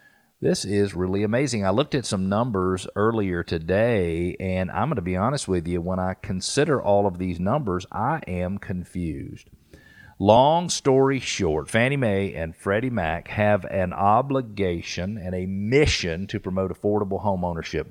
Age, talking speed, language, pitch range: 50-69, 160 wpm, English, 90-110 Hz